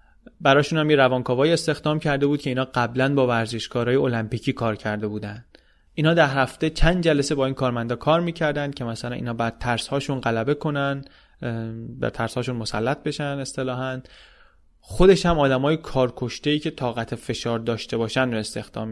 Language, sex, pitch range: Persian, male, 115-145 Hz